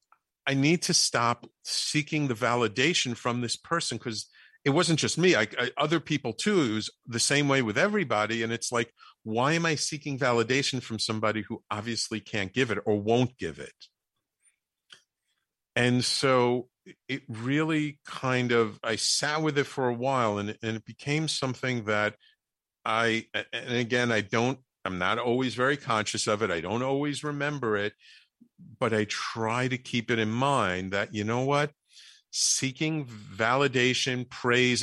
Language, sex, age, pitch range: English, male, 50-69, 110-135 Hz